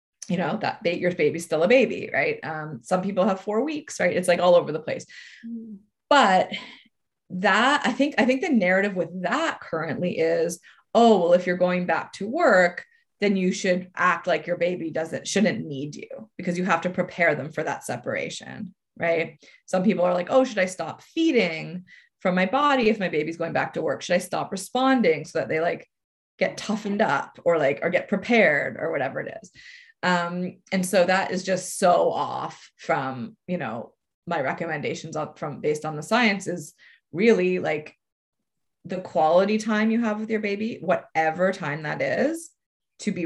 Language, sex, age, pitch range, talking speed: English, female, 20-39, 170-215 Hz, 190 wpm